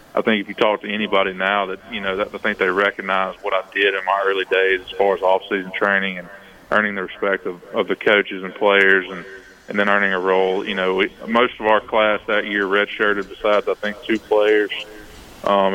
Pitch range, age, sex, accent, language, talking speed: 100-110 Hz, 20-39, male, American, English, 230 wpm